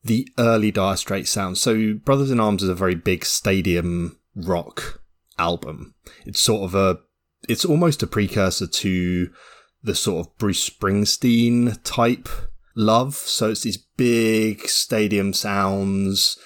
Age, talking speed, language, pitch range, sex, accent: 20-39, 140 wpm, English, 95-115 Hz, male, British